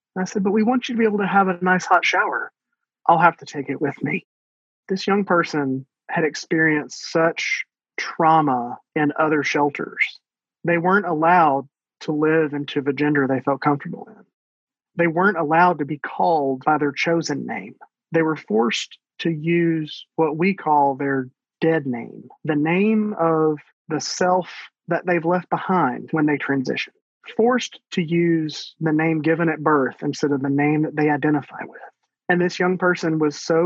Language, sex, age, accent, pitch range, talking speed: English, male, 30-49, American, 145-180 Hz, 175 wpm